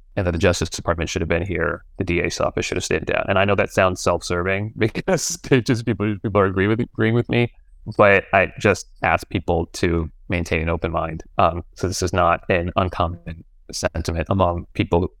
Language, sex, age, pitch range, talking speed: English, male, 30-49, 85-105 Hz, 205 wpm